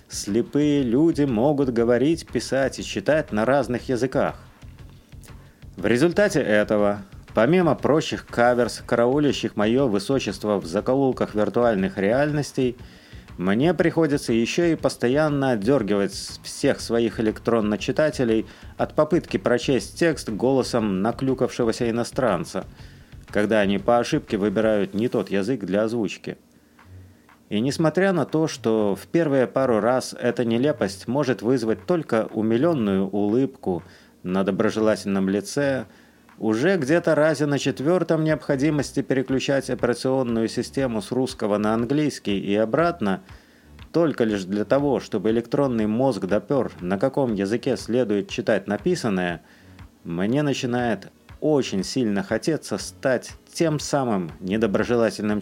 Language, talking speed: Russian, 115 wpm